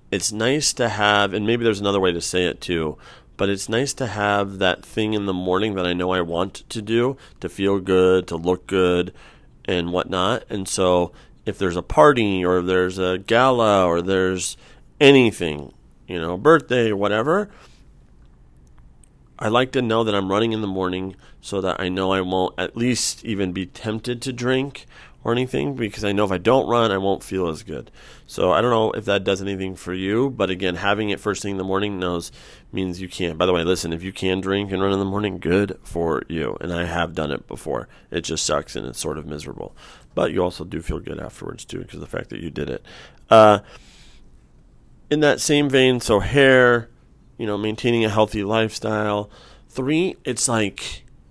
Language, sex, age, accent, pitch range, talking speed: English, male, 30-49, American, 90-110 Hz, 210 wpm